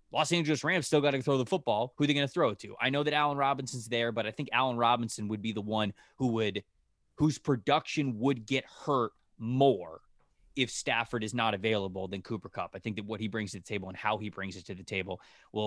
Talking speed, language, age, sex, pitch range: 255 wpm, English, 20-39, male, 105-140 Hz